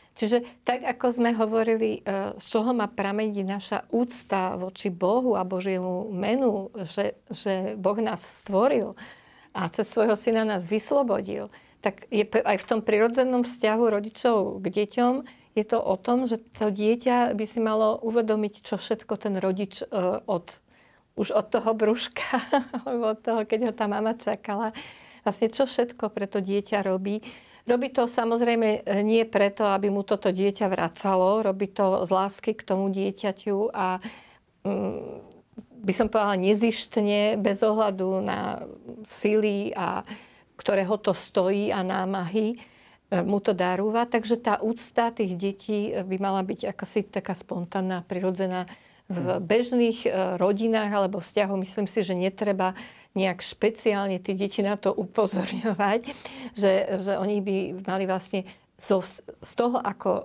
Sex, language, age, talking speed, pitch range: female, Slovak, 50-69, 140 wpm, 195-225 Hz